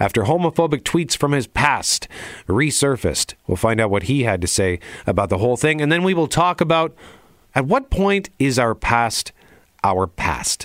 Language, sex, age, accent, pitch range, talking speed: English, male, 40-59, American, 110-165 Hz, 185 wpm